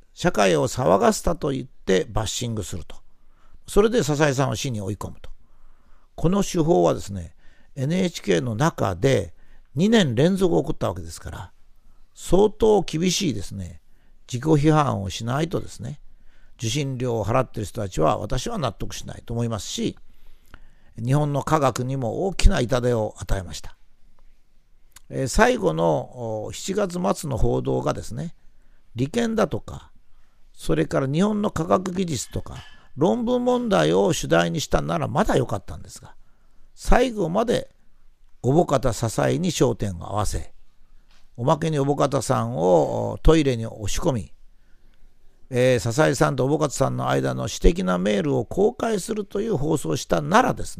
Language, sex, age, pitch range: Japanese, male, 50-69, 100-155 Hz